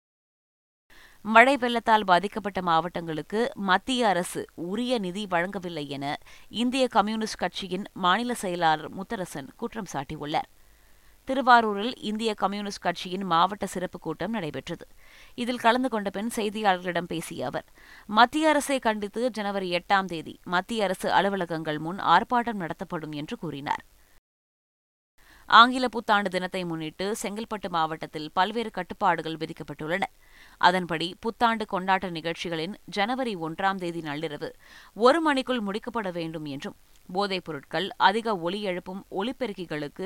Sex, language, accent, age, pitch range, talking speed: female, Tamil, native, 20-39, 165-230 Hz, 110 wpm